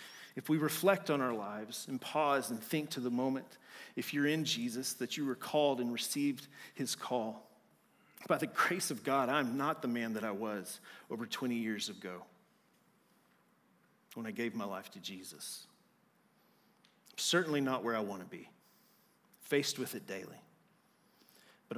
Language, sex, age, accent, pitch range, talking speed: English, male, 40-59, American, 130-200 Hz, 170 wpm